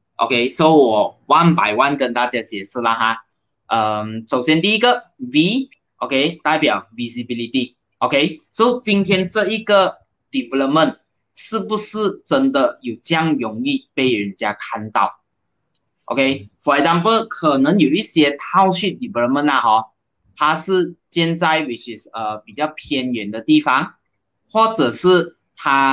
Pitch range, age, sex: 120-185 Hz, 20-39, male